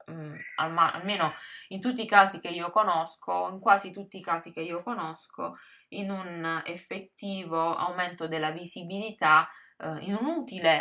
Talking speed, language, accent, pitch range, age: 140 wpm, Italian, native, 155-190 Hz, 20-39